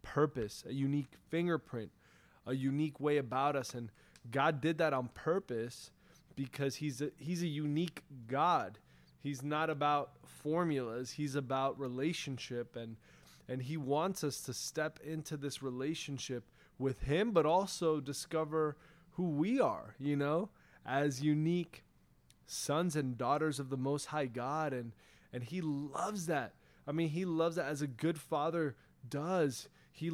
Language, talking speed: English, 150 wpm